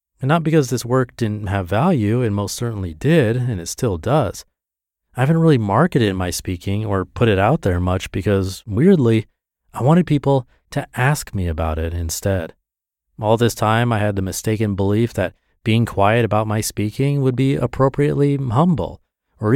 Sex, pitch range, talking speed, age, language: male, 95-125 Hz, 180 wpm, 30-49, English